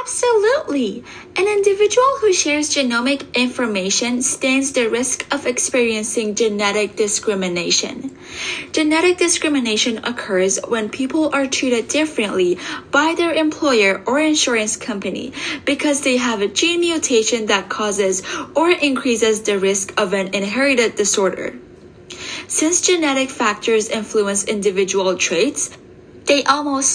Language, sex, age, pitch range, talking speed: English, female, 10-29, 215-295 Hz, 115 wpm